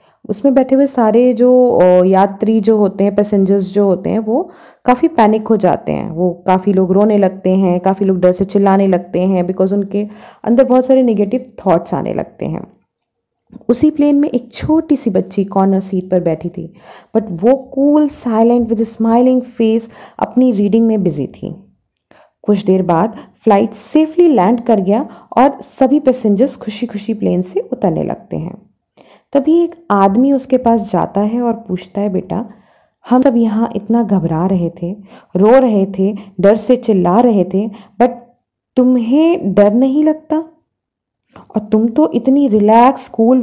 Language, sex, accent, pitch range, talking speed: Hindi, female, native, 195-255 Hz, 165 wpm